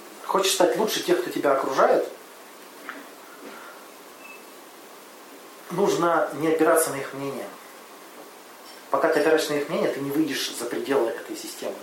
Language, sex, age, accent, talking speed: Russian, male, 30-49, native, 130 wpm